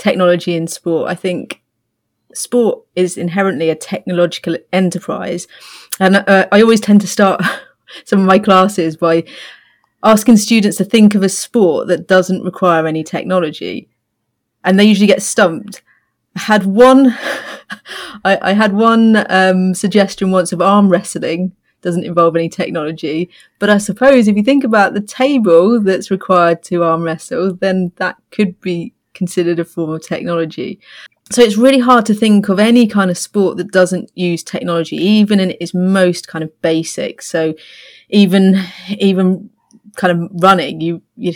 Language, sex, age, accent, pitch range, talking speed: English, female, 30-49, British, 175-205 Hz, 160 wpm